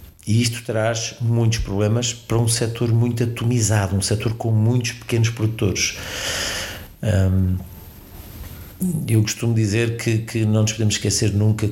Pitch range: 95-115 Hz